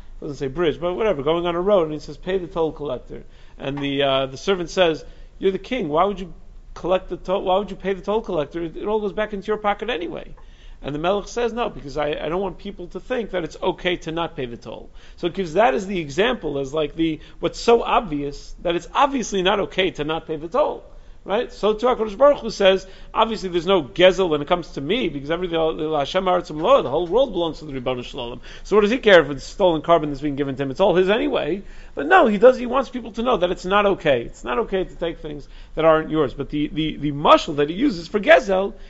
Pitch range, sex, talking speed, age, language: 150-195 Hz, male, 255 wpm, 40-59, English